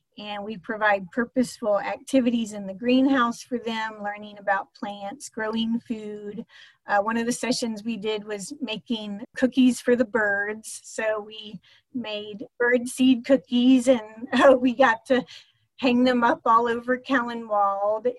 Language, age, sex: English, 30-49, female